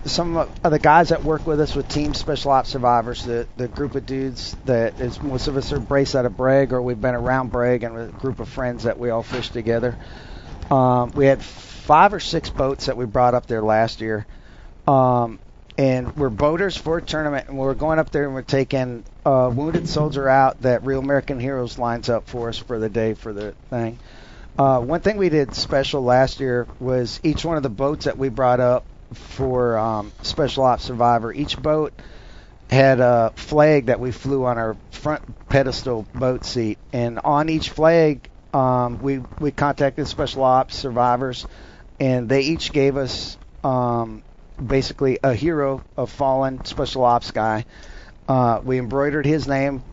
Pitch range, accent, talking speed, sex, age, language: 120-140 Hz, American, 185 wpm, male, 40-59, English